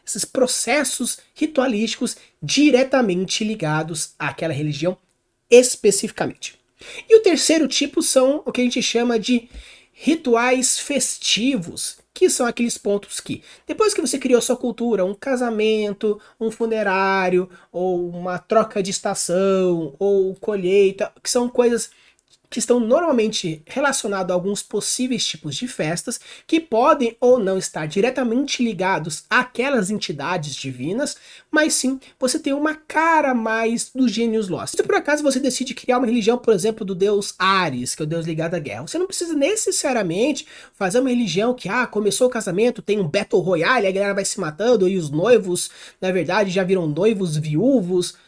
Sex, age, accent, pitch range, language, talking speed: male, 20-39, Brazilian, 190-265 Hz, Portuguese, 155 wpm